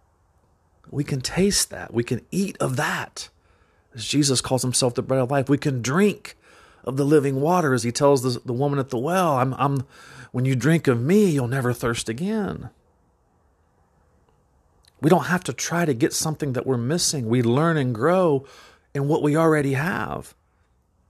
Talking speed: 175 wpm